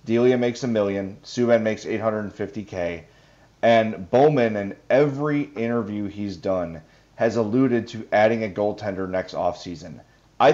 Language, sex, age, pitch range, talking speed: English, male, 30-49, 105-130 Hz, 130 wpm